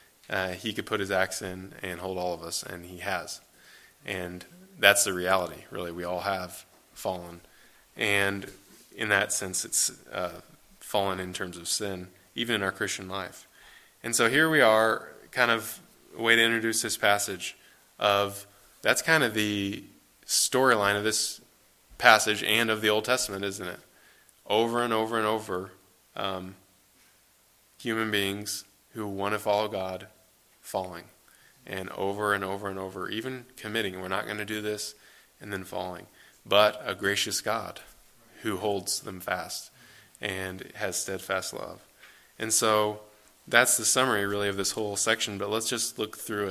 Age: 20-39